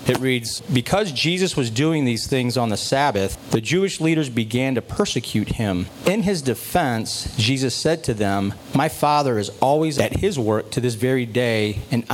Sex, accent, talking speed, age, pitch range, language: male, American, 185 wpm, 40-59, 110-135 Hz, English